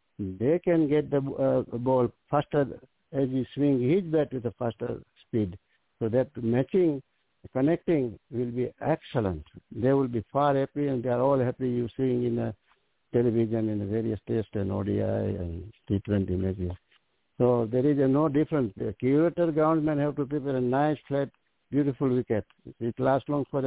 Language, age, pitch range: English, 60-79, 115-145 Hz